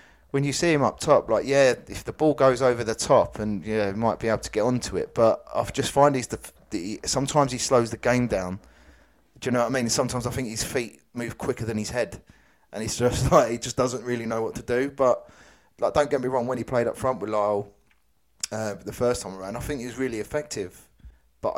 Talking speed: 255 wpm